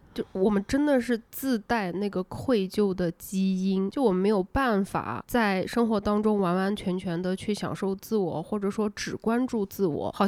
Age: 20-39